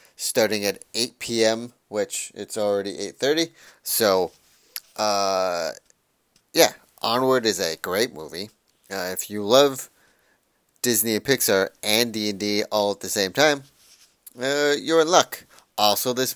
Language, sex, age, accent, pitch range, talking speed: English, male, 30-49, American, 105-130 Hz, 130 wpm